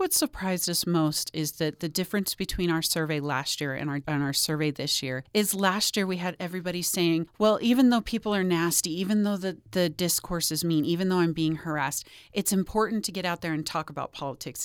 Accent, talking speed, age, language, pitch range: American, 225 wpm, 40-59, English, 155-210 Hz